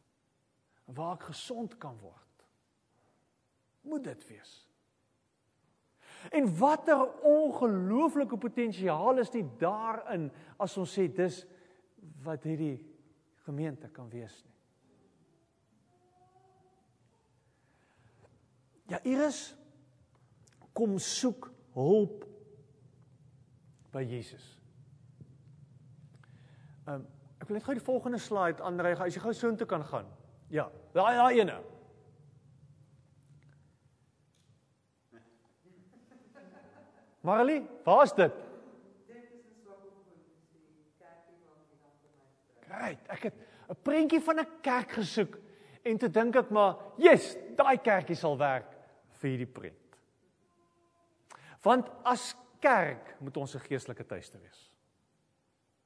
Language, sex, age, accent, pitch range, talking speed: English, male, 40-59, Dutch, 130-215 Hz, 100 wpm